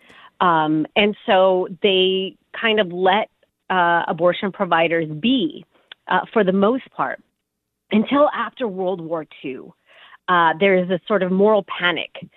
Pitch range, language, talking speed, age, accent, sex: 170-205 Hz, English, 140 wpm, 40-59, American, female